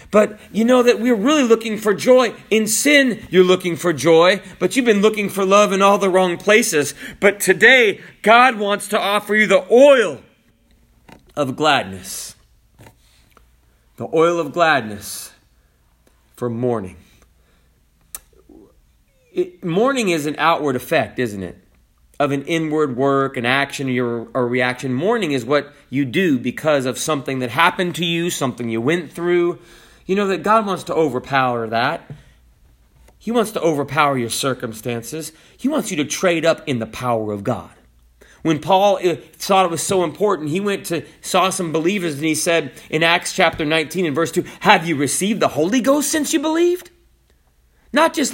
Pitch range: 140-220 Hz